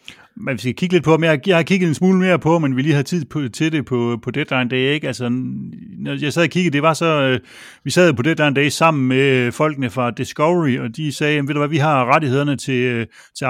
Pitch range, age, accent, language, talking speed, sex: 130-155 Hz, 30-49, native, Danish, 245 wpm, male